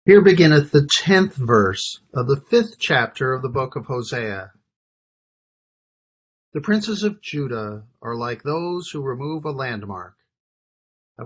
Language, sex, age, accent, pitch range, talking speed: English, male, 40-59, American, 110-150 Hz, 140 wpm